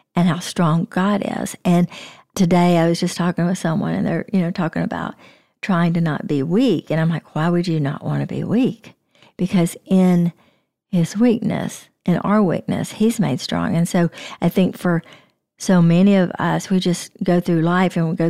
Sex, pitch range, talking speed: female, 165-190 Hz, 205 wpm